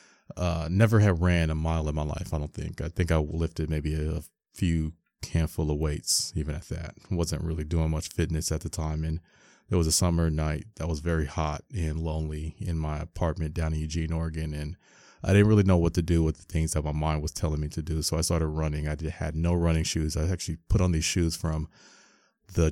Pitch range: 80-90 Hz